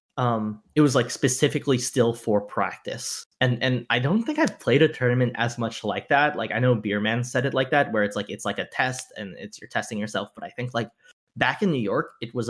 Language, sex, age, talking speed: English, male, 10-29, 245 wpm